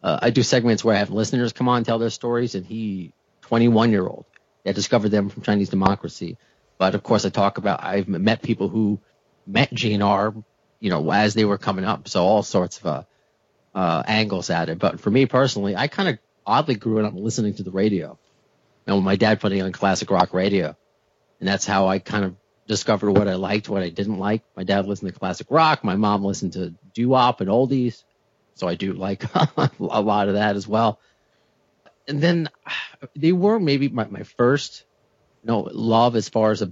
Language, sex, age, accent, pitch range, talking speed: English, male, 40-59, American, 100-120 Hz, 210 wpm